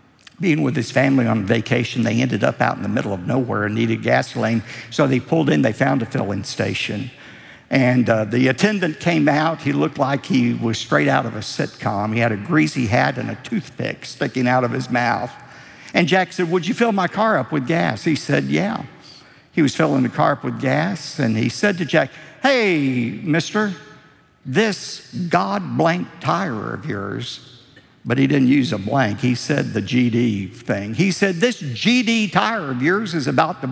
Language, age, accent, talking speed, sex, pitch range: English, 60-79, American, 200 wpm, male, 120-170 Hz